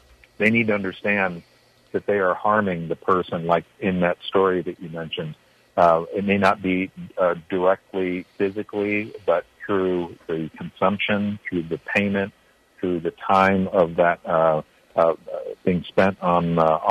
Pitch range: 90-115 Hz